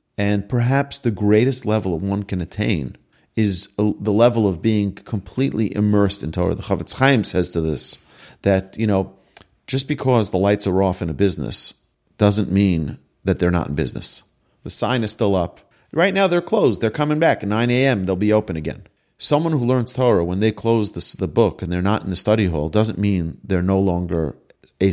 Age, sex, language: 40-59, male, English